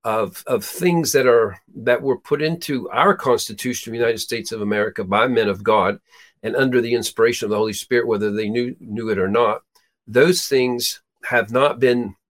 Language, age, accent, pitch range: English, 50-69, American, 120-165 Hz